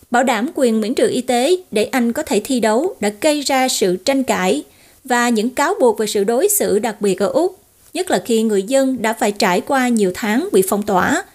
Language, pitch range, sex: Vietnamese, 210-270 Hz, female